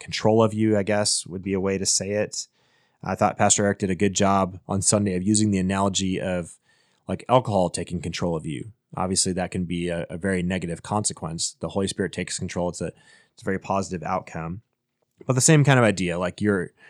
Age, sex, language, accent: 30-49, male, English, American